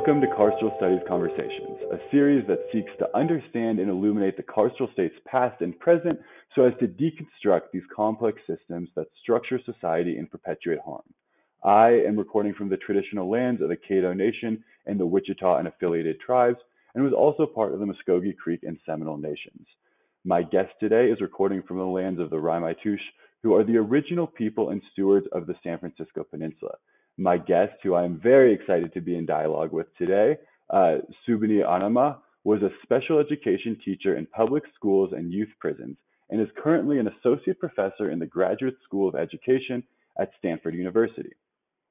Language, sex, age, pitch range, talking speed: English, male, 20-39, 95-130 Hz, 180 wpm